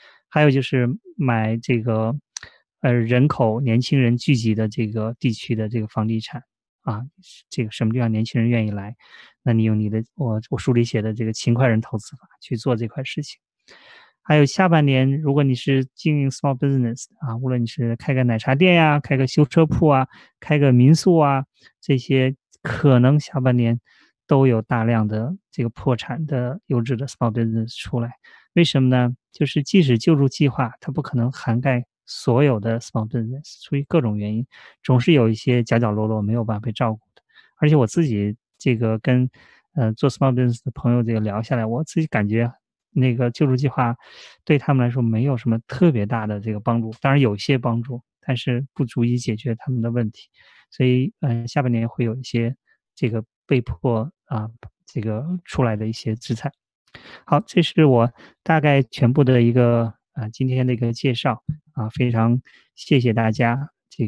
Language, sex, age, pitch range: Chinese, male, 20-39, 115-140 Hz